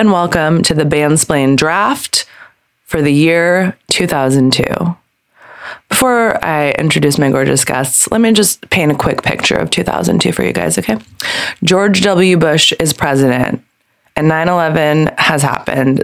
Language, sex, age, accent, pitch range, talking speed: English, female, 20-39, American, 140-190 Hz, 140 wpm